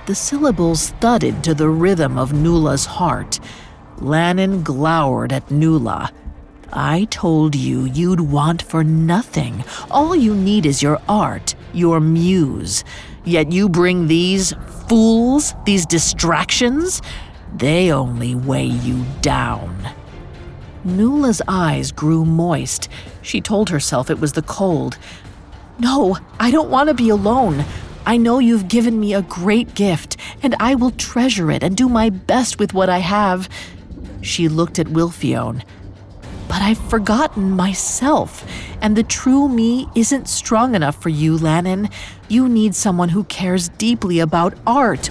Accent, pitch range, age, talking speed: American, 150-225 Hz, 50-69, 140 wpm